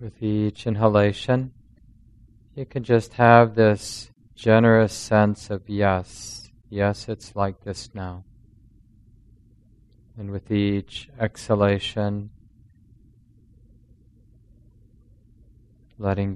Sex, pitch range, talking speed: male, 100-115 Hz, 80 wpm